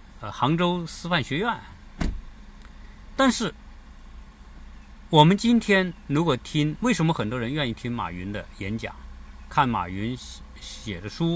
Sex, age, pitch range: male, 50-69, 95-145 Hz